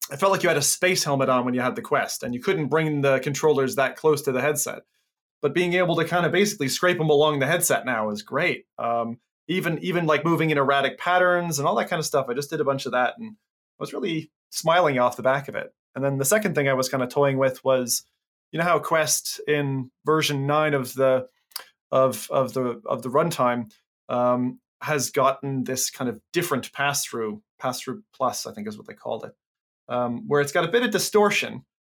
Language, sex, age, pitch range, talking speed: English, male, 20-39, 130-175 Hz, 230 wpm